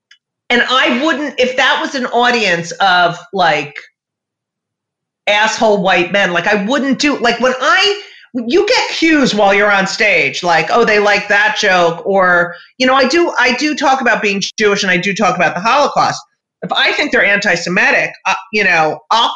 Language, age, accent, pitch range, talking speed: English, 40-59, American, 195-265 Hz, 185 wpm